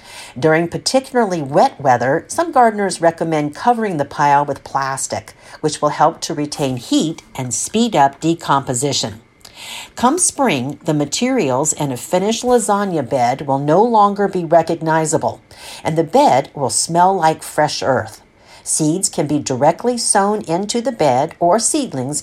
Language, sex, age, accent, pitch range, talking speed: English, female, 50-69, American, 140-210 Hz, 145 wpm